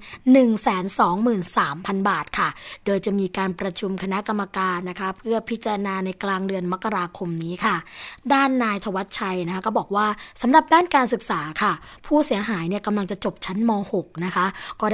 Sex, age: female, 20-39